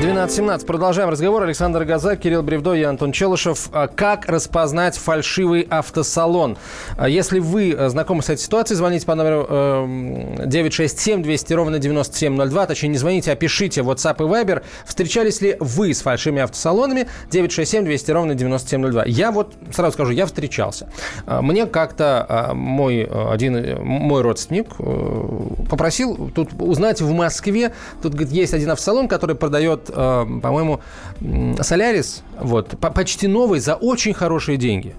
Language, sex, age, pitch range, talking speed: Russian, male, 20-39, 140-185 Hz, 135 wpm